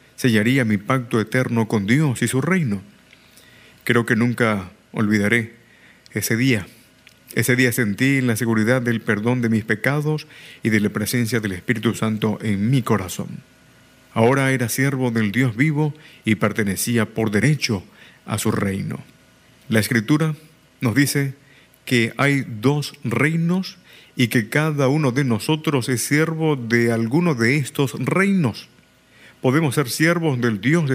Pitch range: 115-150 Hz